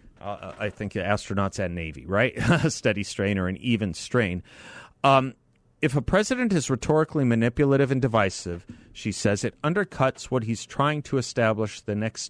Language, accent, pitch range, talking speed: English, American, 110-160 Hz, 165 wpm